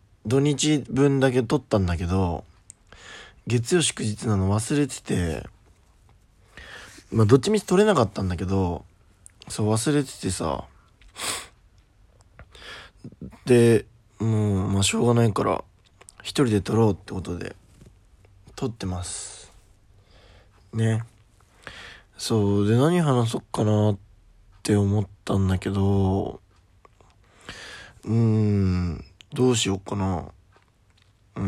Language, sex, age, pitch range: Japanese, male, 20-39, 95-115 Hz